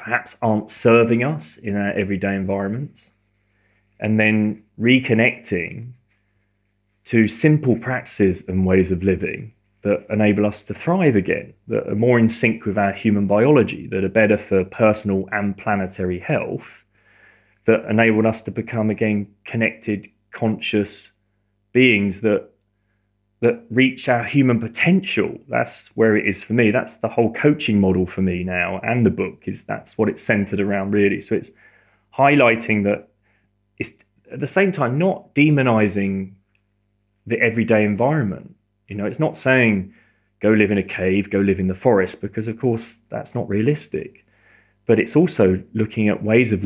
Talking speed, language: 155 wpm, English